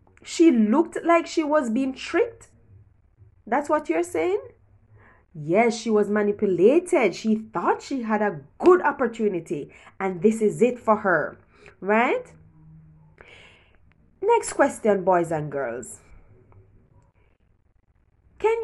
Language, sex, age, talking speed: English, female, 20-39, 115 wpm